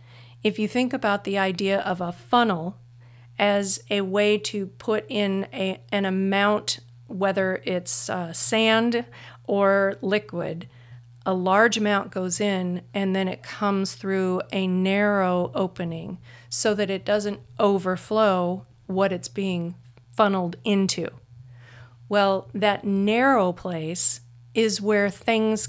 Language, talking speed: English, 125 wpm